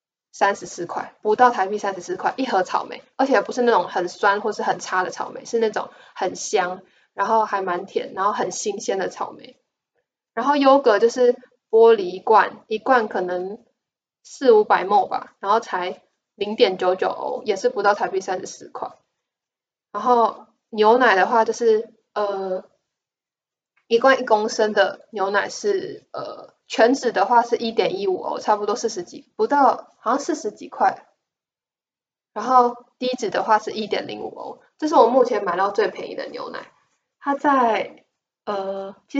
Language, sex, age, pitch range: Chinese, female, 20-39, 205-290 Hz